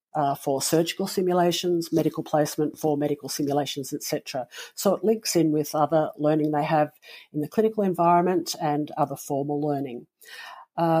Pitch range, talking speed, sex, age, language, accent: 145-175 Hz, 160 wpm, female, 50-69, English, Australian